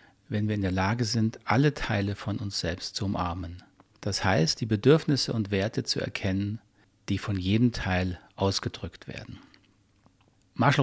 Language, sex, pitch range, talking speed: German, male, 100-120 Hz, 155 wpm